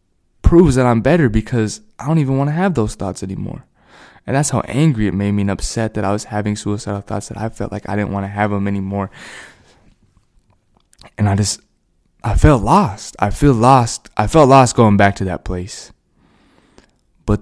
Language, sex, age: English, male, 20-39